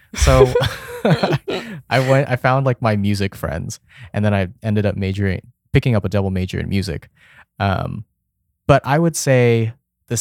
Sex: male